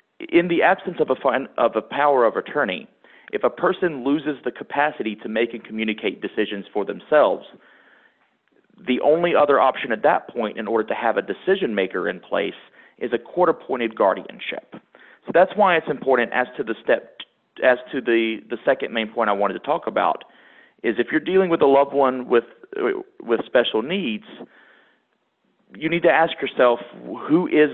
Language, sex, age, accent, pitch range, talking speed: English, male, 40-59, American, 115-155 Hz, 165 wpm